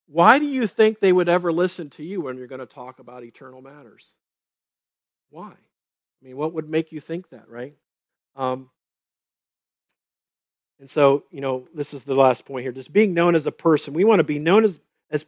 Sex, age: male, 50-69